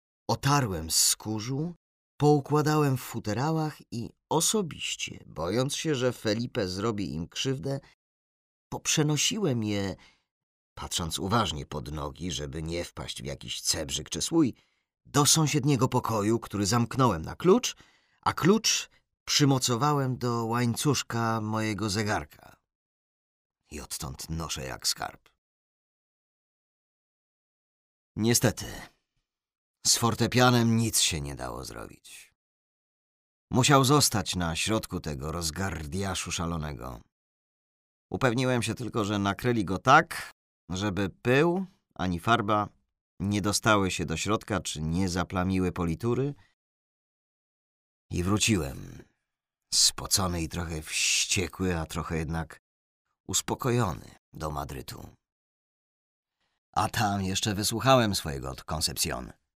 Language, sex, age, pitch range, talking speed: Polish, male, 40-59, 80-125 Hz, 100 wpm